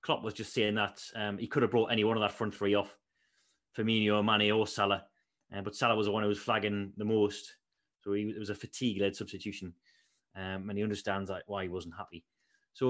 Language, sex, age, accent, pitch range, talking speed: English, male, 30-49, British, 105-125 Hz, 225 wpm